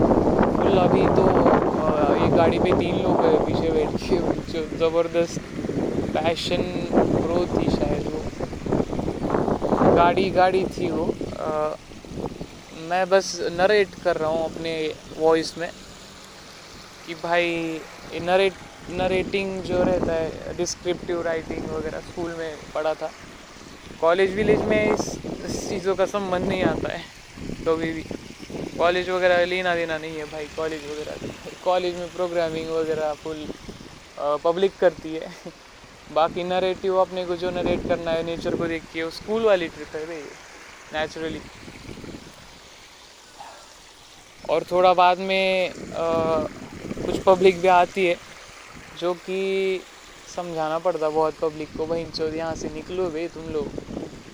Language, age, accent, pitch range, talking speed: Marathi, 20-39, native, 160-185 Hz, 100 wpm